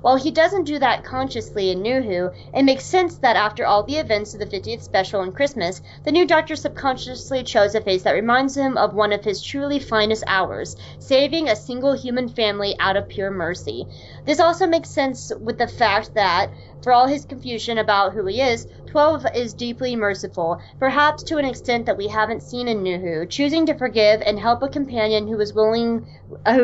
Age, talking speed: 30-49, 195 wpm